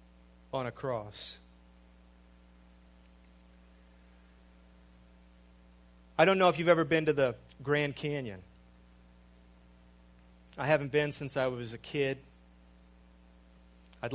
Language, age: English, 30-49